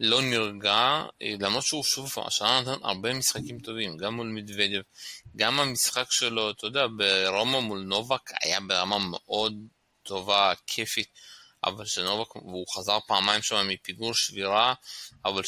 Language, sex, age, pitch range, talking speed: Hebrew, male, 20-39, 105-125 Hz, 130 wpm